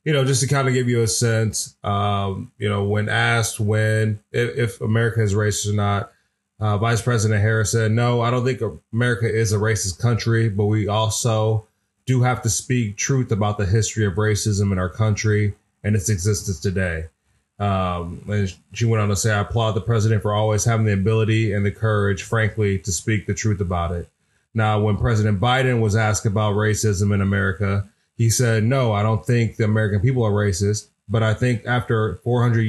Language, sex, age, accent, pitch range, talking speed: English, male, 20-39, American, 105-115 Hz, 200 wpm